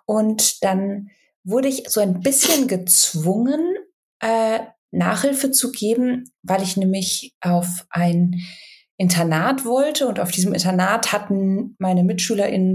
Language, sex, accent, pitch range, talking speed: German, female, German, 180-240 Hz, 120 wpm